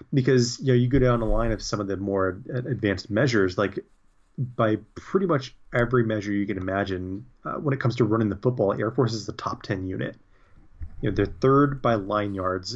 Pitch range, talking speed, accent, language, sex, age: 100-125 Hz, 215 wpm, American, English, male, 30-49